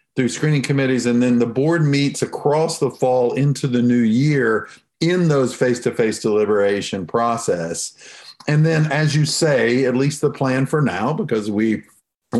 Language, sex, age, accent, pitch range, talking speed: English, male, 50-69, American, 110-150 Hz, 165 wpm